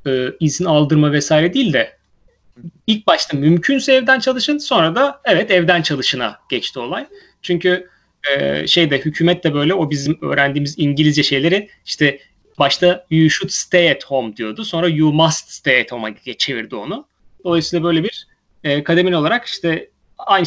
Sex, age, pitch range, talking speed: male, 30-49, 135-175 Hz, 155 wpm